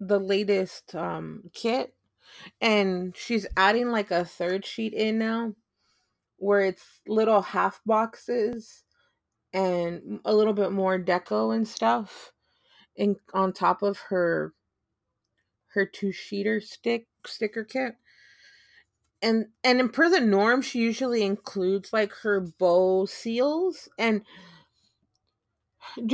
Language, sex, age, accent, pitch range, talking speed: English, female, 30-49, American, 165-225 Hz, 115 wpm